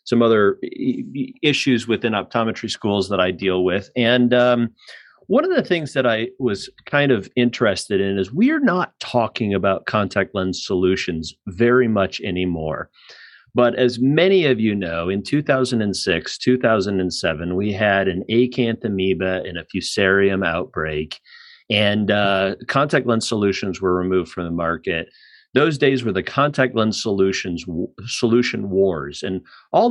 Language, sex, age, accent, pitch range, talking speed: English, male, 40-59, American, 95-130 Hz, 150 wpm